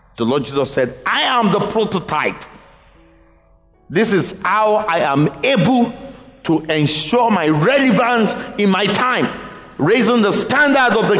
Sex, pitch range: male, 120-190 Hz